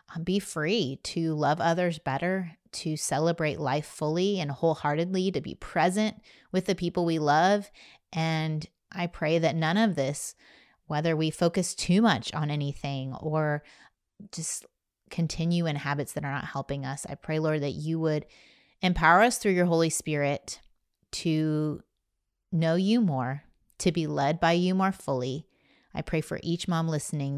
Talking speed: 160 wpm